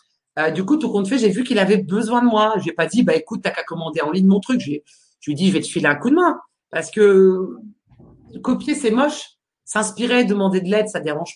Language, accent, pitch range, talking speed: French, French, 165-215 Hz, 265 wpm